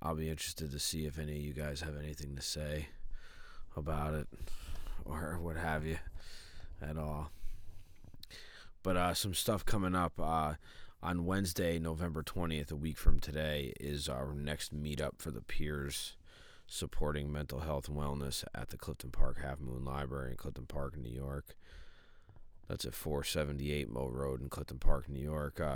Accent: American